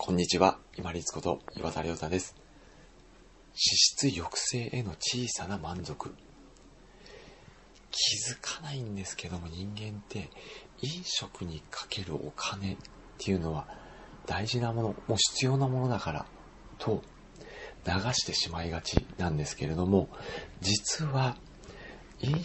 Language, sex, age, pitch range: Japanese, male, 40-59, 90-130 Hz